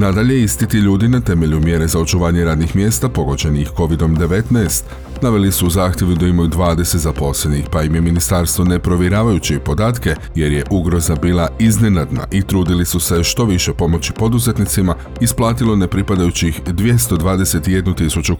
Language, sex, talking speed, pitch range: Croatian, male, 135 wpm, 80-100 Hz